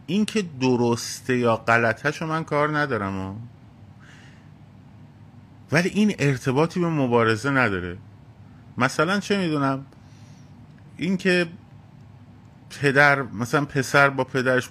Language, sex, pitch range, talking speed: Persian, male, 120-145 Hz, 100 wpm